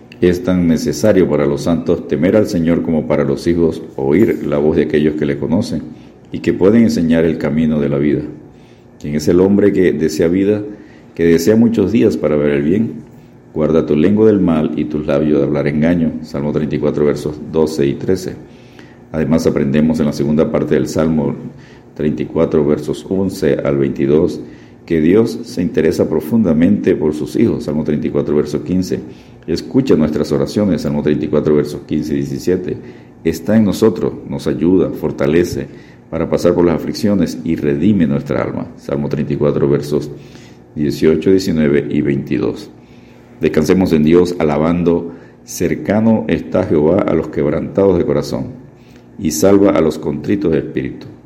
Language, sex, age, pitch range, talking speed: Spanish, male, 50-69, 75-85 Hz, 160 wpm